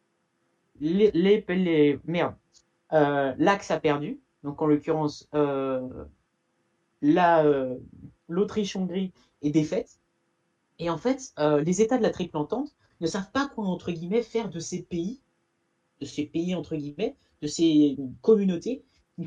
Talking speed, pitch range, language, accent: 145 wpm, 155-215 Hz, French, French